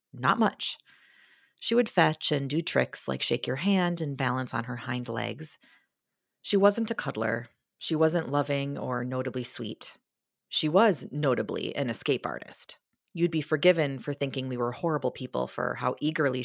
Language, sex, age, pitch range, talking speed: English, female, 30-49, 130-170 Hz, 170 wpm